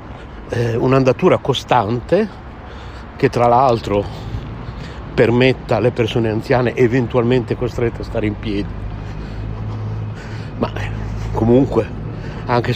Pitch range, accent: 105-125 Hz, native